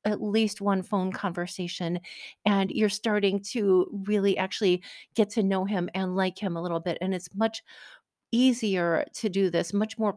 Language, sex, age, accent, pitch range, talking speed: English, female, 40-59, American, 185-235 Hz, 175 wpm